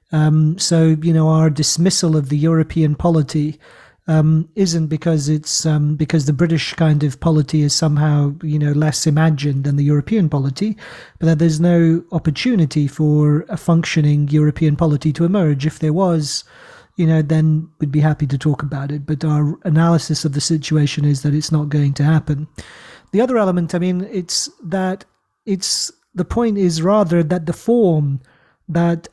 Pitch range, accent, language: 155-175 Hz, British, English